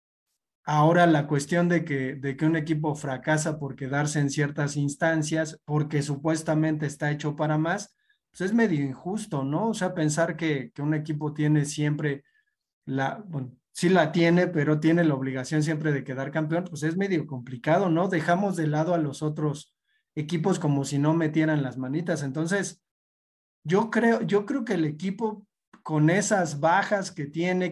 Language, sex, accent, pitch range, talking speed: Spanish, male, Mexican, 150-185 Hz, 170 wpm